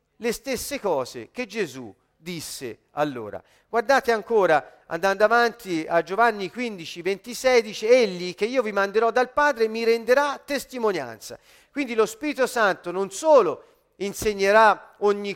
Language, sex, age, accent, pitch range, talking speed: Italian, male, 50-69, native, 195-250 Hz, 135 wpm